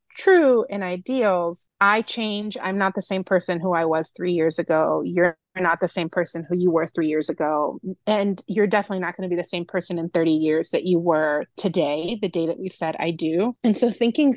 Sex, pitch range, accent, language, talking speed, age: female, 180-220 Hz, American, English, 225 wpm, 30-49